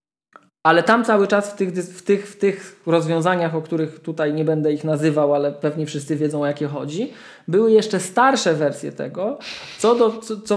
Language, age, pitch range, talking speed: Polish, 20-39, 150-200 Hz, 175 wpm